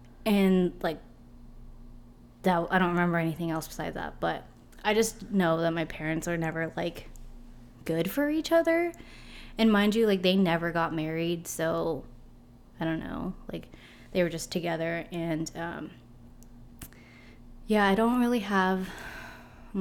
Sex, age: female, 20-39